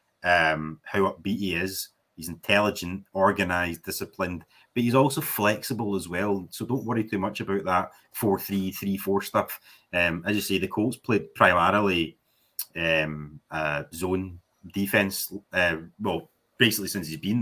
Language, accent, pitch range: English, British, 90-105 Hz